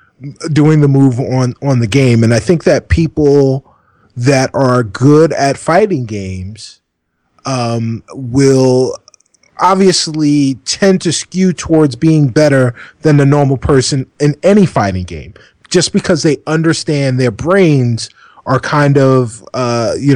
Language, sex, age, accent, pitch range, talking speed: English, male, 30-49, American, 115-145 Hz, 135 wpm